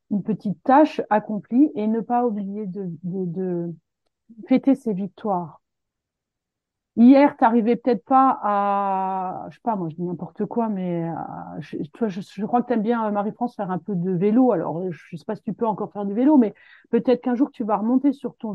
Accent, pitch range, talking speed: French, 200-250 Hz, 210 wpm